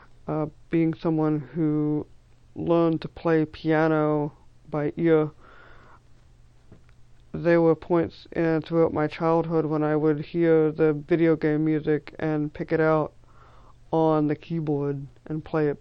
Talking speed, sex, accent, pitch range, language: 130 wpm, male, American, 150-170 Hz, English